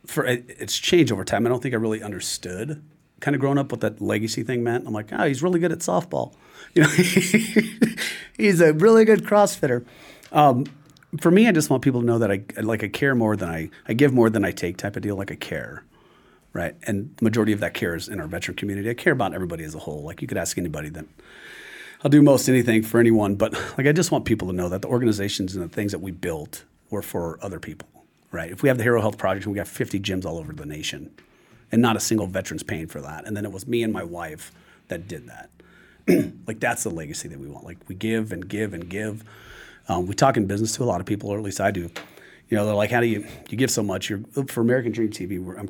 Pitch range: 100-135 Hz